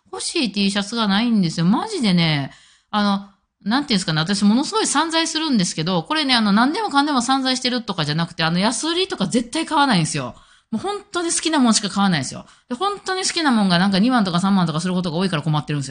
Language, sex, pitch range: Japanese, female, 160-245 Hz